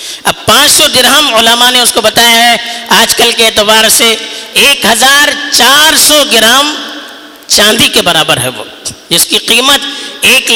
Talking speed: 160 wpm